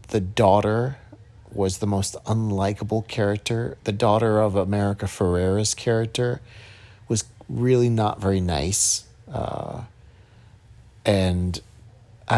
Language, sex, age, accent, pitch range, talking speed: English, male, 40-59, American, 100-115 Hz, 100 wpm